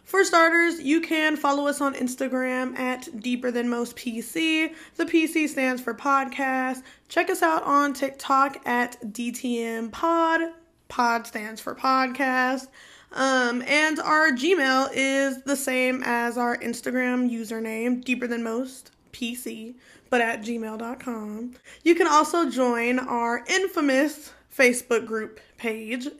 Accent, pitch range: American, 245-310 Hz